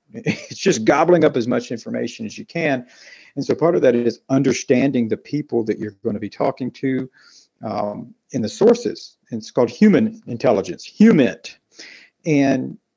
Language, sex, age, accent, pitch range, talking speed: English, male, 50-69, American, 120-170 Hz, 170 wpm